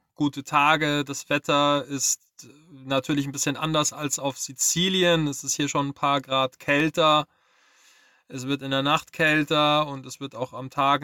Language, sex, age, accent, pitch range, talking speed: German, male, 20-39, German, 140-165 Hz, 175 wpm